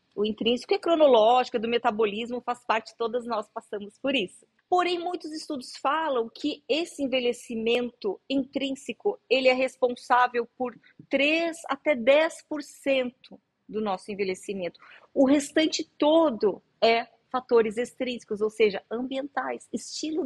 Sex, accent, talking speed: female, Brazilian, 125 wpm